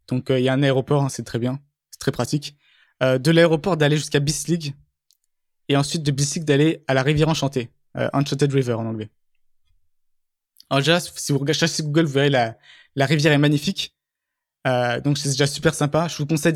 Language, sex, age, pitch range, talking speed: French, male, 20-39, 135-150 Hz, 215 wpm